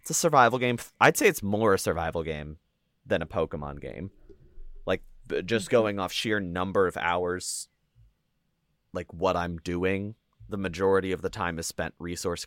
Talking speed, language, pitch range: 170 wpm, English, 80-100 Hz